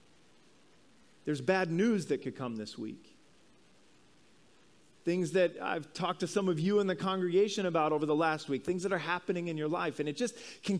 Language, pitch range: English, 160-230 Hz